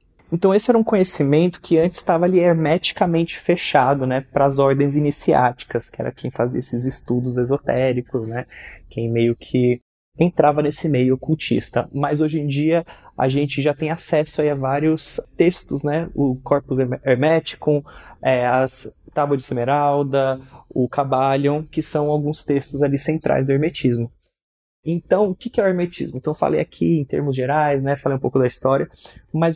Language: Portuguese